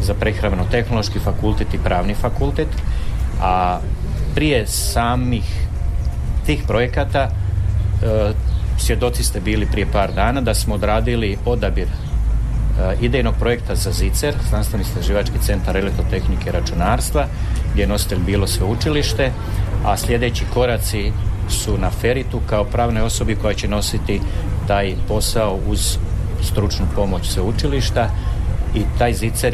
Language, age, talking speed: Croatian, 40-59, 115 wpm